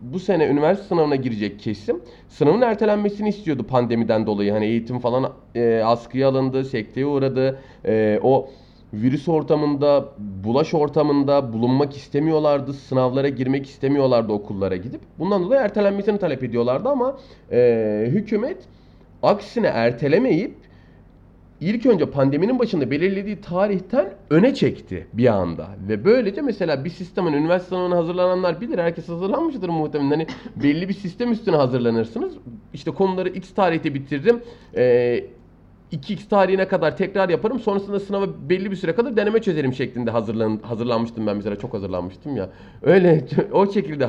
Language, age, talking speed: Turkish, 30-49, 135 wpm